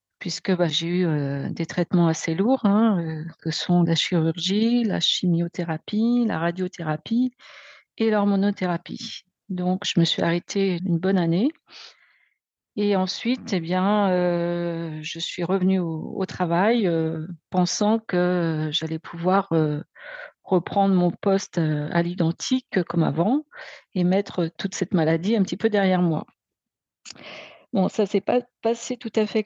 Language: French